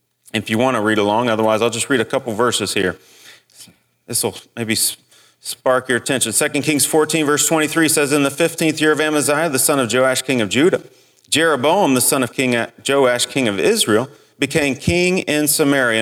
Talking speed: 195 wpm